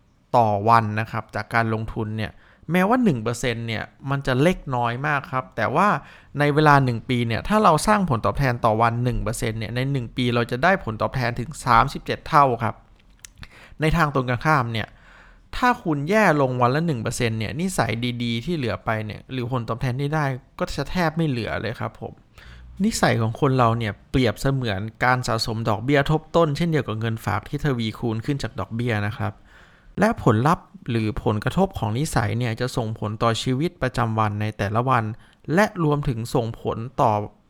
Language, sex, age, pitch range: Thai, male, 20-39, 110-145 Hz